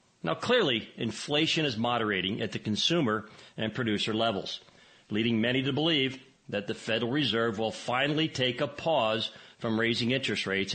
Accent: American